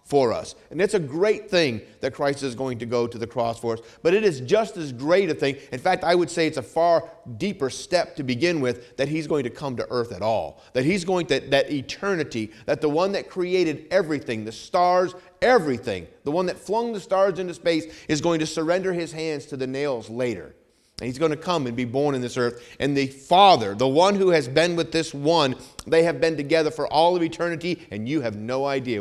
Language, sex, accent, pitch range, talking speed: English, male, American, 120-175 Hz, 240 wpm